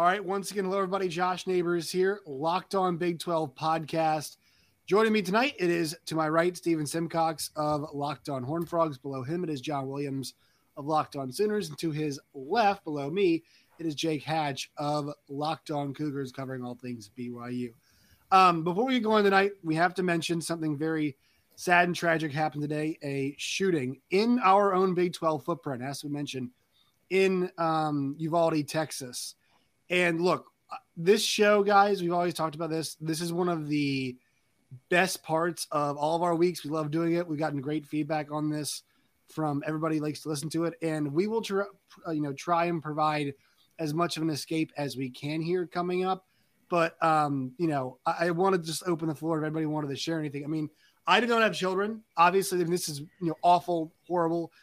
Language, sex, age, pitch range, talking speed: English, male, 20-39, 145-175 Hz, 200 wpm